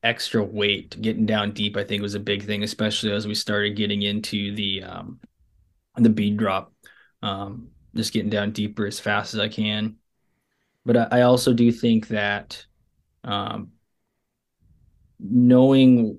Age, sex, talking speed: 20-39, male, 150 wpm